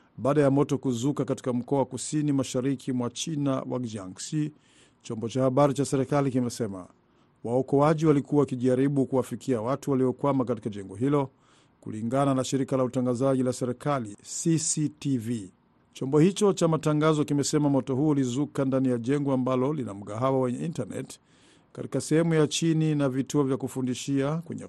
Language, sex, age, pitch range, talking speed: Swahili, male, 50-69, 125-145 Hz, 145 wpm